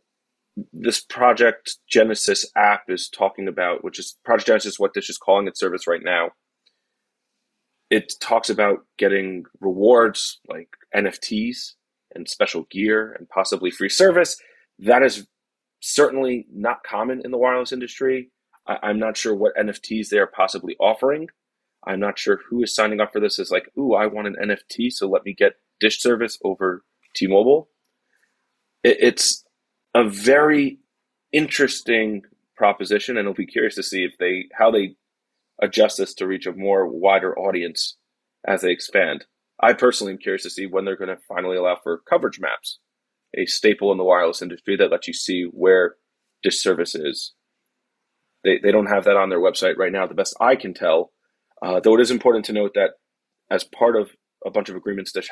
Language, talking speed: English, 175 wpm